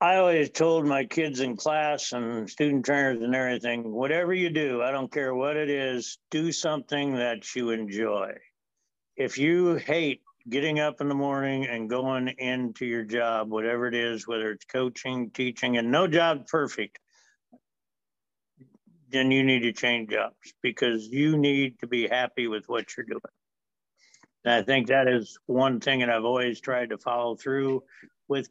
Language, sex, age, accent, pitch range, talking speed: English, male, 60-79, American, 120-140 Hz, 170 wpm